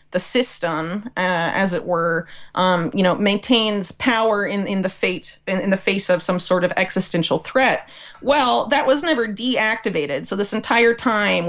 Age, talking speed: 30-49, 180 wpm